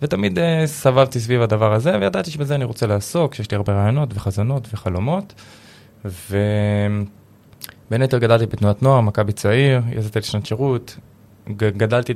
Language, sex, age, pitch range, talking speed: Hebrew, male, 20-39, 100-125 Hz, 140 wpm